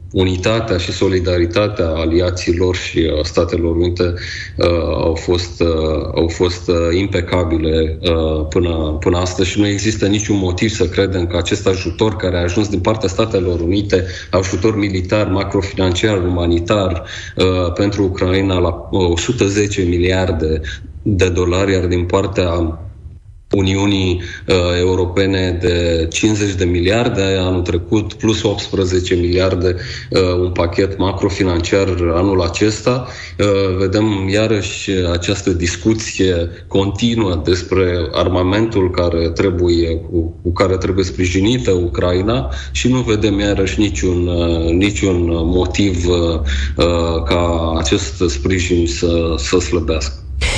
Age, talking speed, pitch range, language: 30-49, 120 wpm, 85-100 Hz, Romanian